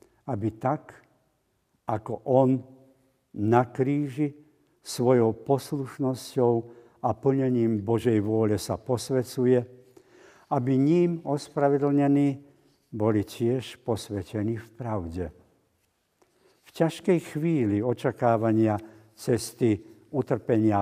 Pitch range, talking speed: 110-135 Hz, 80 wpm